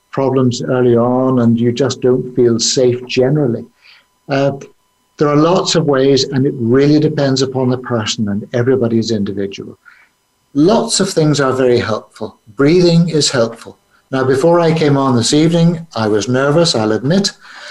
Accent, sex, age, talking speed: British, male, 60-79, 160 wpm